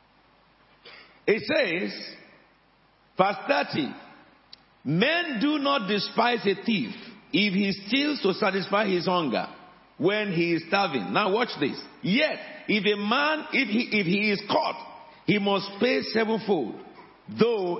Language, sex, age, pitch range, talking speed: English, male, 50-69, 190-245 Hz, 130 wpm